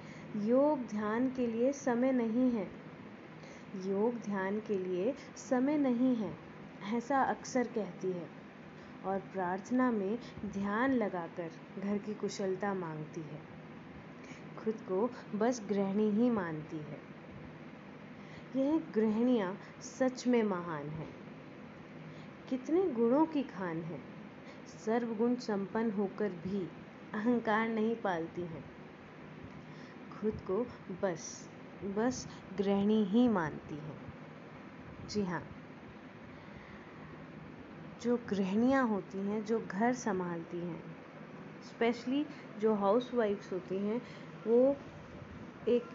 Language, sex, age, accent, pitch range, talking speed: Hindi, female, 20-39, native, 195-245 Hz, 105 wpm